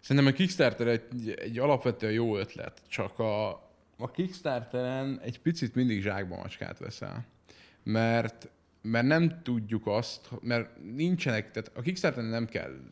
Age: 30-49